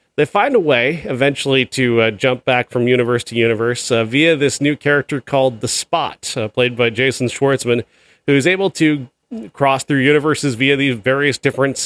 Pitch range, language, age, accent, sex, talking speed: 120-145 Hz, English, 30-49, American, male, 185 wpm